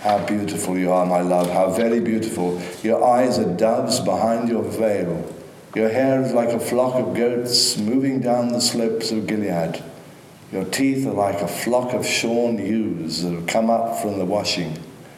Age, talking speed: 60-79, 180 wpm